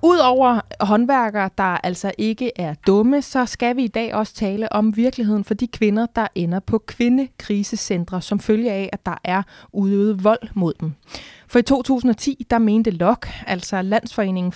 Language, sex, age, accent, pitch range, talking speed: Danish, female, 20-39, native, 195-240 Hz, 170 wpm